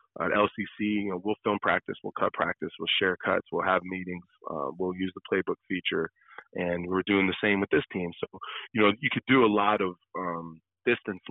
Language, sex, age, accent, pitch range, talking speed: English, male, 30-49, American, 95-110 Hz, 220 wpm